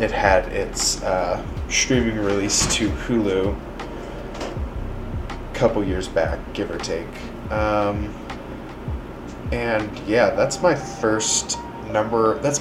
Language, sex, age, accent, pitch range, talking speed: English, male, 20-39, American, 100-115 Hz, 110 wpm